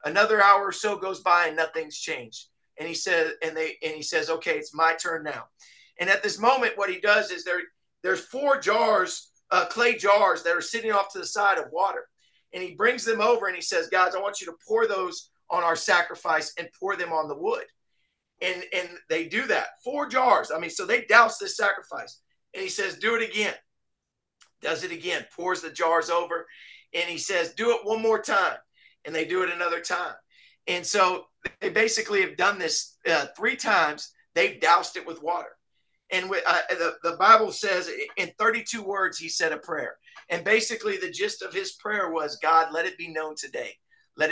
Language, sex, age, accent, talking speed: English, male, 50-69, American, 210 wpm